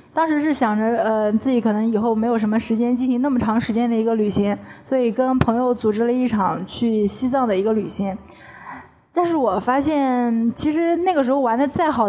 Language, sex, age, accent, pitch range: Chinese, female, 20-39, native, 225-275 Hz